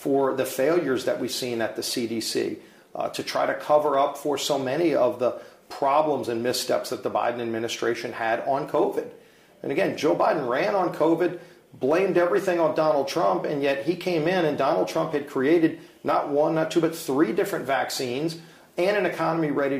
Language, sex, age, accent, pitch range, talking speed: English, male, 40-59, American, 135-170 Hz, 195 wpm